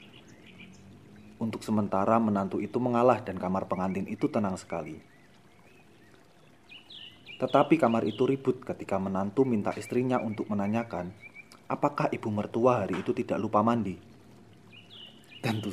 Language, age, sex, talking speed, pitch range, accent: Indonesian, 30-49, male, 115 wpm, 100-125 Hz, native